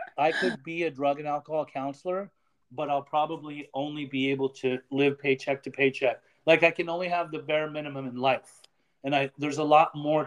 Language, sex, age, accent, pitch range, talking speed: English, male, 30-49, American, 135-155 Hz, 205 wpm